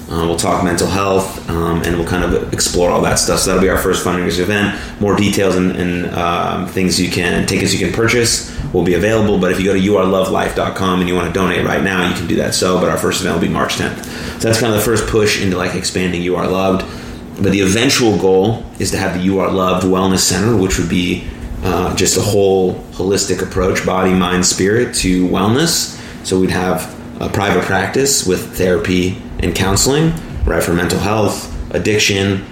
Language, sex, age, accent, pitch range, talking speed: English, male, 30-49, American, 90-100 Hz, 220 wpm